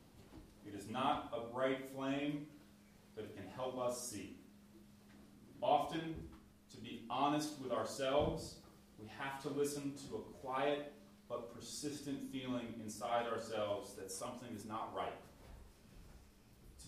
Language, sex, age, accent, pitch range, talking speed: English, male, 30-49, American, 115-150 Hz, 130 wpm